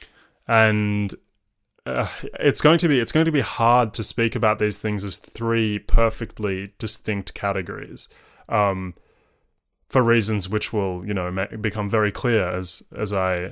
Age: 20-39